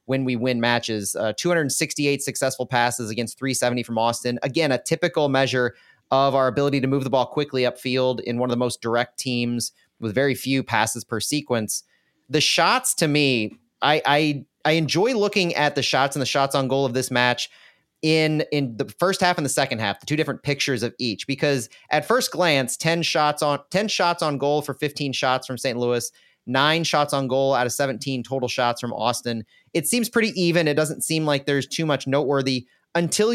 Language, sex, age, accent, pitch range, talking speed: English, male, 30-49, American, 125-160 Hz, 205 wpm